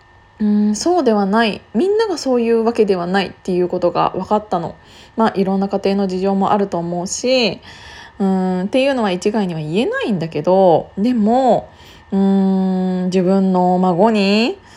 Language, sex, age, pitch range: Japanese, female, 20-39, 185-230 Hz